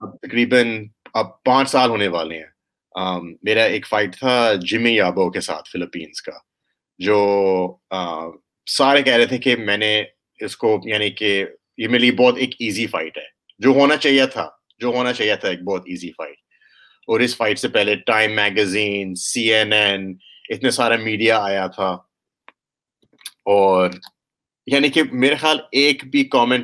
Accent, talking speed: Indian, 135 wpm